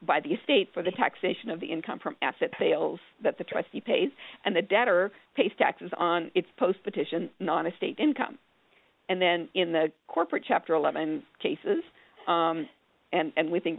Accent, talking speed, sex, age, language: American, 170 wpm, female, 50-69, English